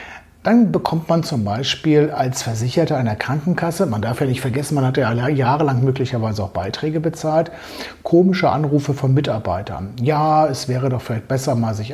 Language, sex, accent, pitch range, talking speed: German, male, German, 125-160 Hz, 170 wpm